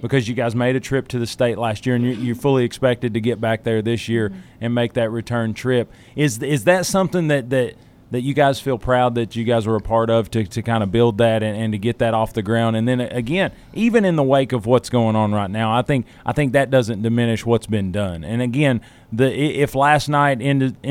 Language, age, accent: English, 30-49, American